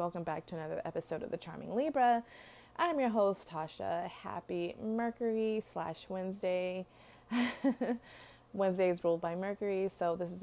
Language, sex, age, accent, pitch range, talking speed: English, female, 20-39, American, 165-190 Hz, 145 wpm